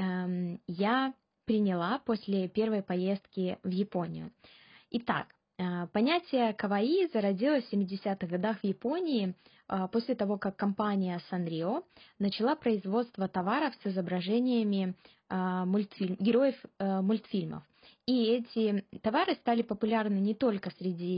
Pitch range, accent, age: 190-230 Hz, native, 20-39